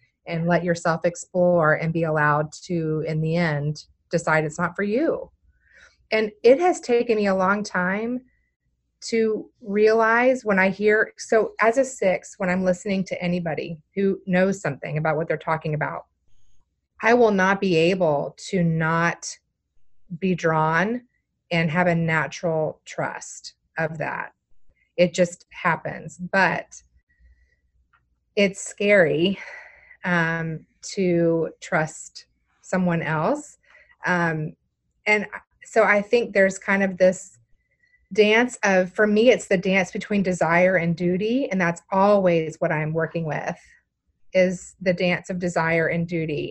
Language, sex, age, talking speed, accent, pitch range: English, female, 30-49, 140 wpm, American, 165-200 Hz